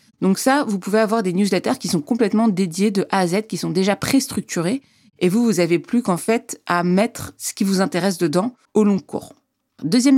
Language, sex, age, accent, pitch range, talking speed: French, female, 30-49, French, 170-215 Hz, 220 wpm